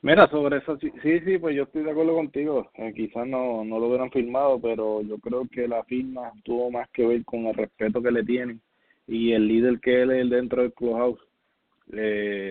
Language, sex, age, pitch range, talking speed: English, male, 20-39, 110-125 Hz, 210 wpm